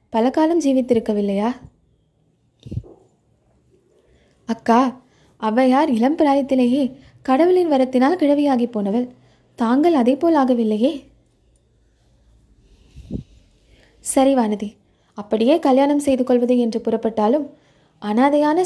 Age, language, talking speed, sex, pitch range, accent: 20-39, Tamil, 70 wpm, female, 235-280 Hz, native